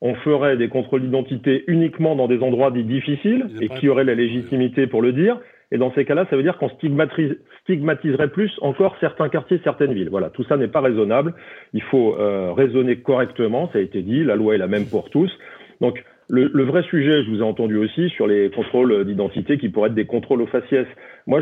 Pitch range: 115-145 Hz